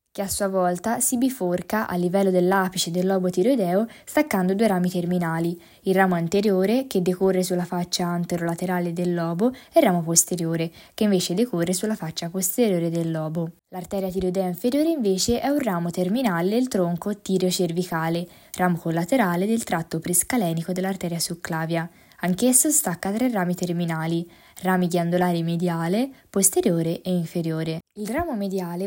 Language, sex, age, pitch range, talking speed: Italian, female, 20-39, 175-210 Hz, 145 wpm